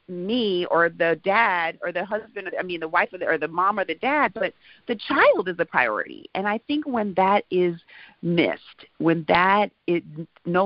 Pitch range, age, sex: 160-205 Hz, 30-49, female